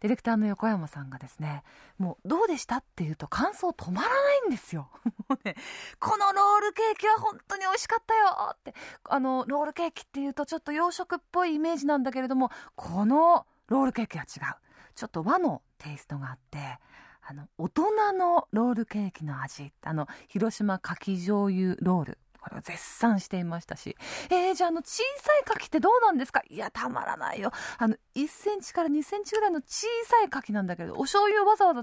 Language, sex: Japanese, female